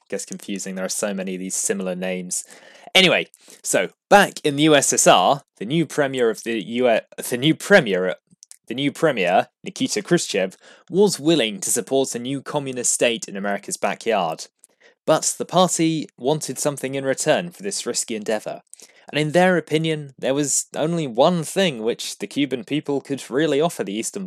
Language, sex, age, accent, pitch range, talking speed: English, male, 20-39, British, 130-170 Hz, 175 wpm